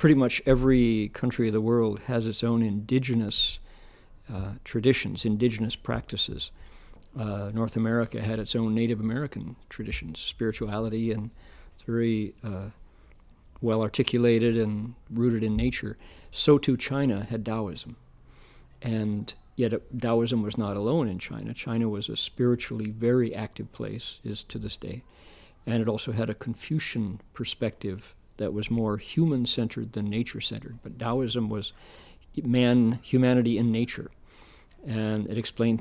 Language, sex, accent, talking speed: English, male, American, 135 wpm